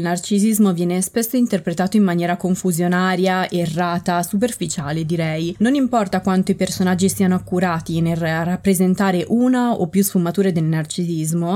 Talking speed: 130 wpm